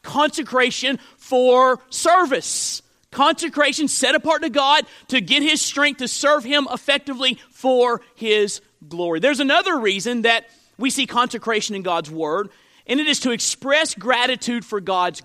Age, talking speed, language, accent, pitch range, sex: 40-59, 145 wpm, English, American, 205-270 Hz, male